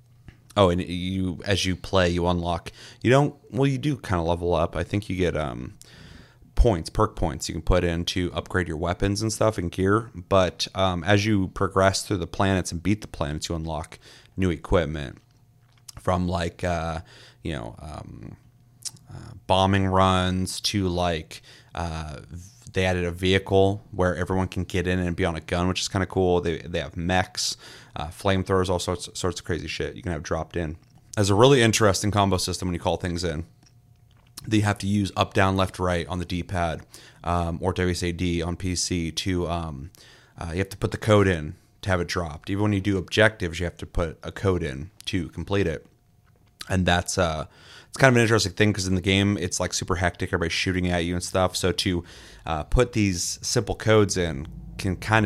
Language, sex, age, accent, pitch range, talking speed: English, male, 30-49, American, 85-105 Hz, 205 wpm